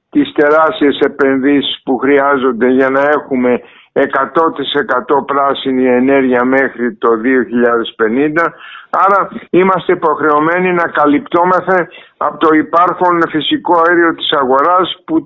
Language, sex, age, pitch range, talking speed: Greek, male, 50-69, 140-180 Hz, 105 wpm